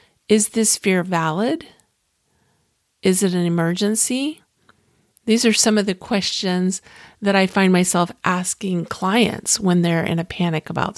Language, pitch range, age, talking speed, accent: English, 175-205 Hz, 50-69, 140 wpm, American